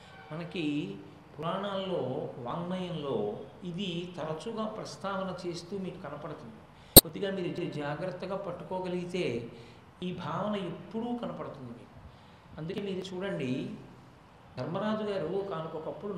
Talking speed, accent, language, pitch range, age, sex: 90 wpm, native, Telugu, 135-190 Hz, 60-79, male